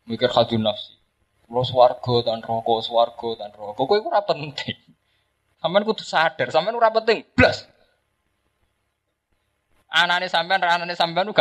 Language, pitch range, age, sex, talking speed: Indonesian, 105-150 Hz, 20-39, male, 130 wpm